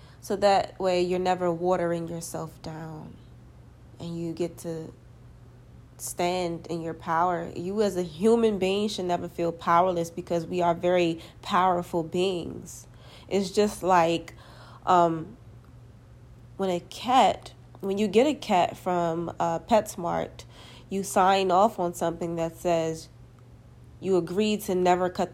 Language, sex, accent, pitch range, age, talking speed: English, female, American, 140-195 Hz, 20-39, 135 wpm